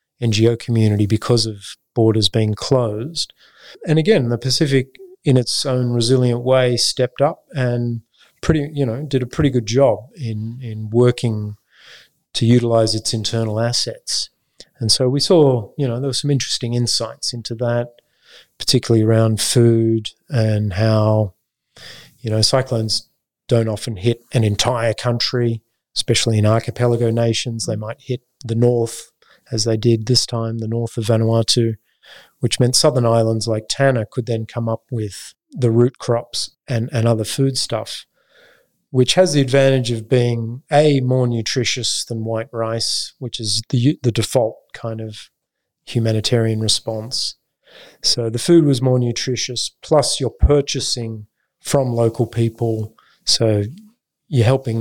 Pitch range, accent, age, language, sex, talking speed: 110-125 Hz, Australian, 30-49, English, male, 150 wpm